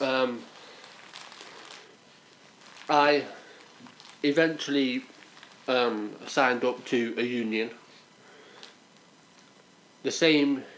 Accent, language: British, English